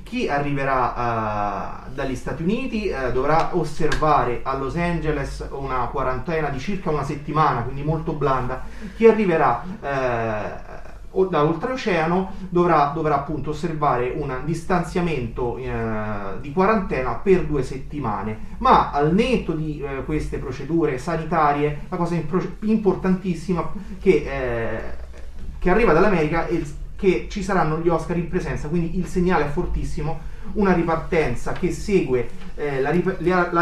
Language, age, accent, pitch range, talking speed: Italian, 30-49, native, 130-180 Hz, 135 wpm